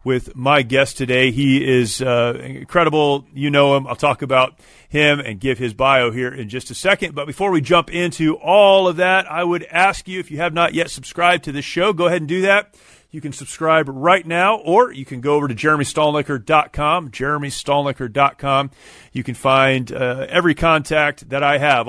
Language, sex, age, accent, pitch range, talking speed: English, male, 30-49, American, 135-160 Hz, 195 wpm